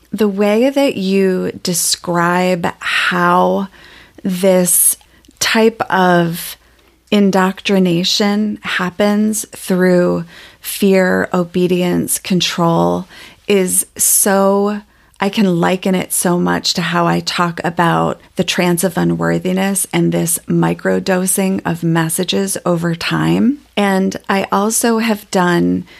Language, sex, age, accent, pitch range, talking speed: English, female, 30-49, American, 170-200 Hz, 105 wpm